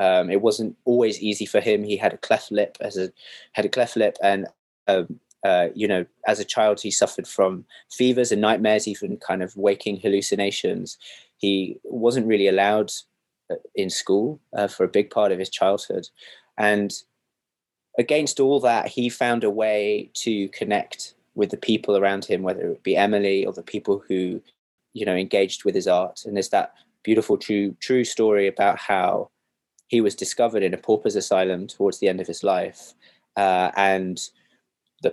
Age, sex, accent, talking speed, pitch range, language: 20-39, male, British, 180 wpm, 100-120 Hz, English